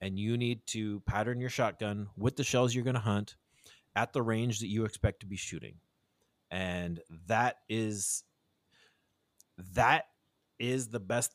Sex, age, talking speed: male, 30-49, 160 wpm